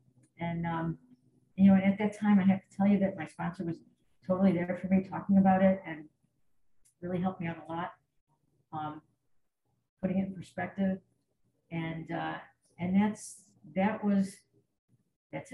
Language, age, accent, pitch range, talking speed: English, 50-69, American, 165-200 Hz, 165 wpm